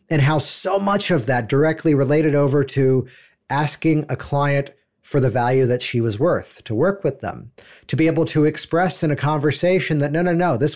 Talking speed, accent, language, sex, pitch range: 205 wpm, American, English, male, 125-155 Hz